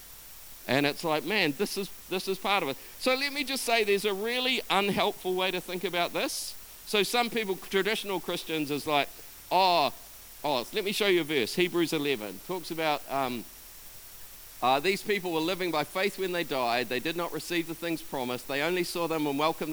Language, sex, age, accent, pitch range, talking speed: English, male, 50-69, Australian, 145-195 Hz, 205 wpm